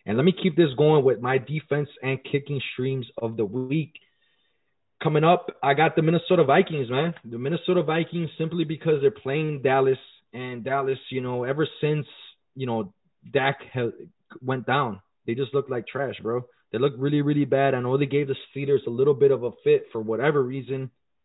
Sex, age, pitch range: male, 20-39, 130-170 Hz